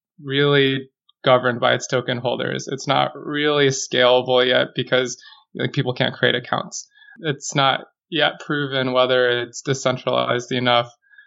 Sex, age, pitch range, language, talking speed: male, 20-39, 125-145 Hz, English, 135 wpm